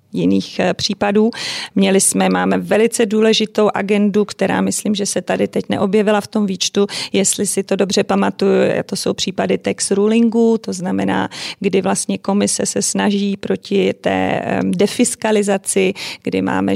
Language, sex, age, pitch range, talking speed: Czech, female, 30-49, 195-215 Hz, 145 wpm